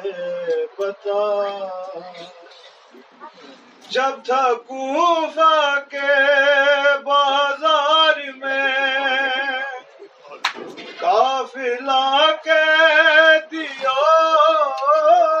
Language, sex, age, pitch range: Urdu, male, 30-49, 215-310 Hz